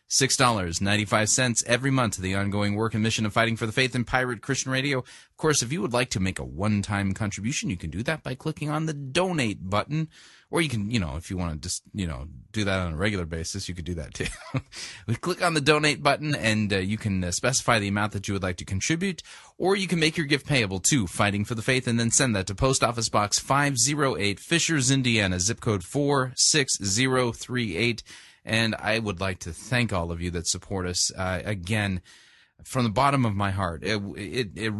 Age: 30-49